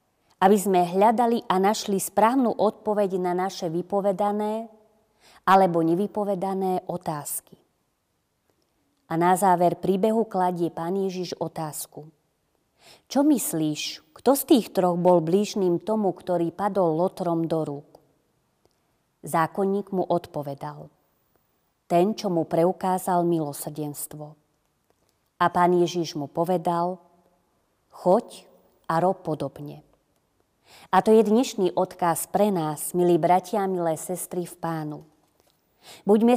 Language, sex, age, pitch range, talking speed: Slovak, female, 30-49, 170-210 Hz, 110 wpm